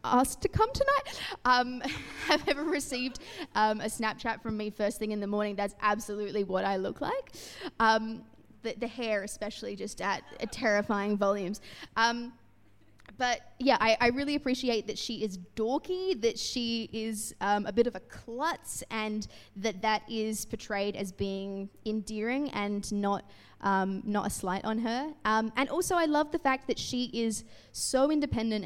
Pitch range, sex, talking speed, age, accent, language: 205-235 Hz, female, 170 wpm, 20-39, Australian, English